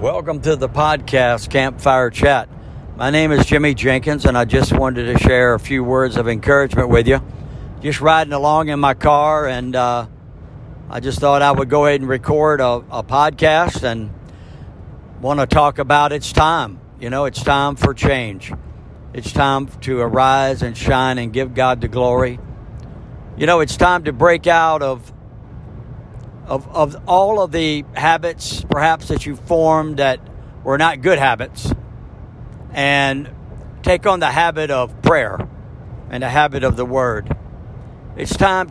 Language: Russian